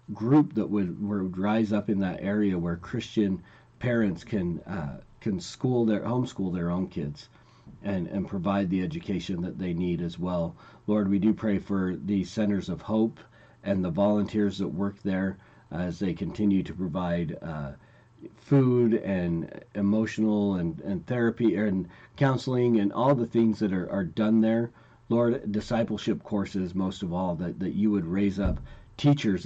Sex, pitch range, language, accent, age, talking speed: male, 90-110 Hz, English, American, 40-59, 165 wpm